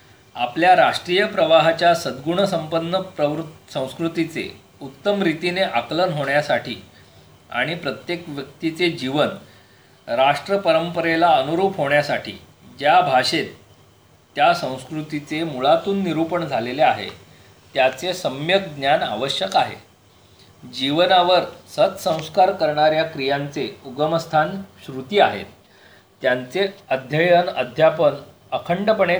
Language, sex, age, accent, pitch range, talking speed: Marathi, male, 40-59, native, 130-170 Hz, 85 wpm